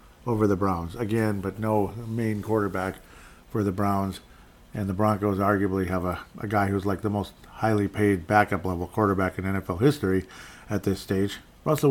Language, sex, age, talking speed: English, male, 50-69, 175 wpm